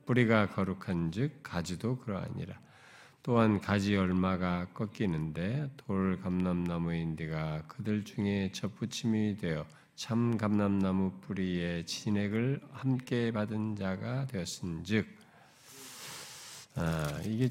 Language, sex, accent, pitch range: Korean, male, native, 85-110 Hz